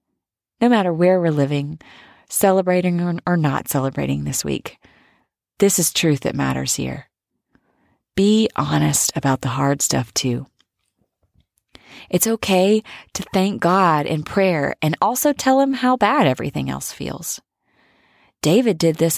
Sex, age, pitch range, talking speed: female, 30-49, 150-210 Hz, 135 wpm